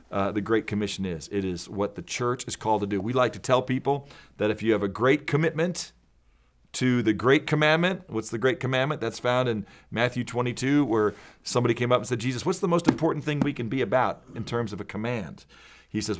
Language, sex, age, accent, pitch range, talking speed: English, male, 40-59, American, 100-130 Hz, 230 wpm